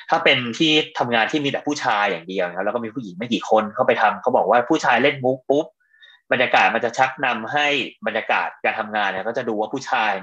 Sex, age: male, 20-39